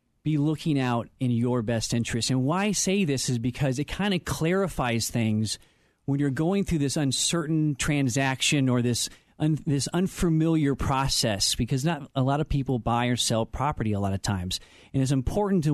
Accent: American